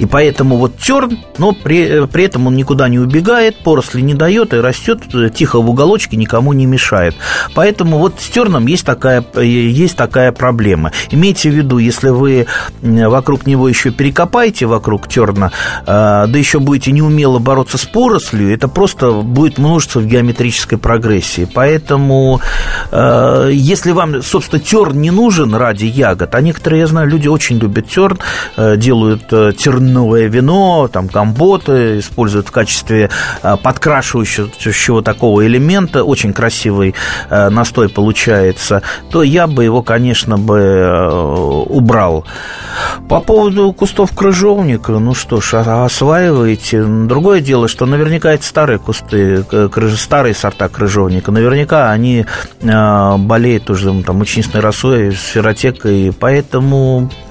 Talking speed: 125 wpm